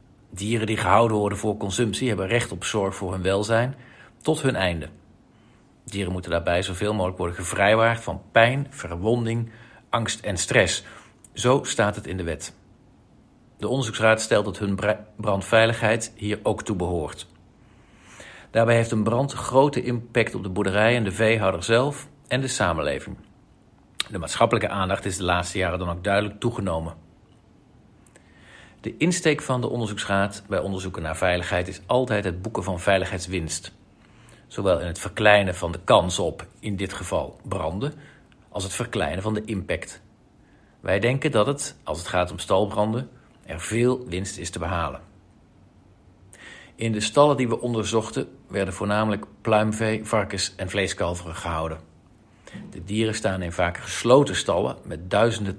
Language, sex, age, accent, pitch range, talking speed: Dutch, male, 50-69, Dutch, 95-115 Hz, 155 wpm